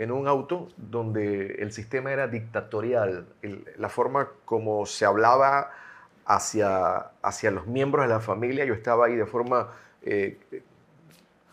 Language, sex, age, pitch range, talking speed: Spanish, male, 30-49, 110-150 Hz, 135 wpm